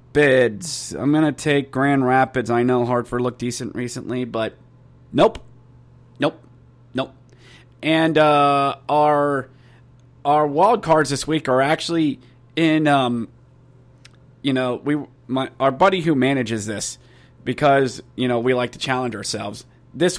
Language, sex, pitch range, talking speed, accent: English, male, 125-155 Hz, 140 wpm, American